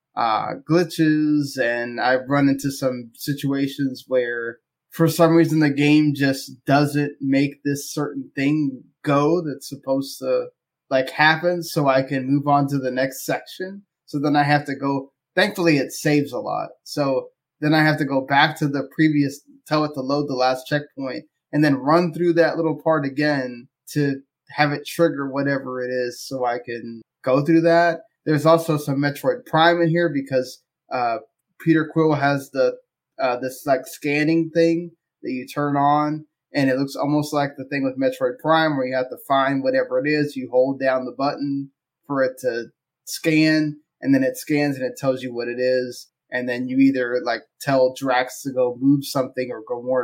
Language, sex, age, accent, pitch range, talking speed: English, male, 20-39, American, 130-155 Hz, 190 wpm